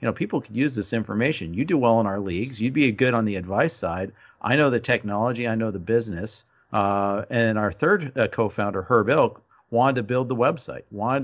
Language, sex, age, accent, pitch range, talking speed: English, male, 50-69, American, 110-125 Hz, 225 wpm